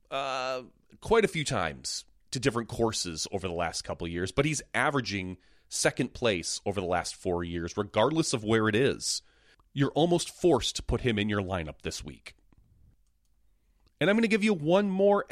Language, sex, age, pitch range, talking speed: English, male, 30-49, 95-145 Hz, 190 wpm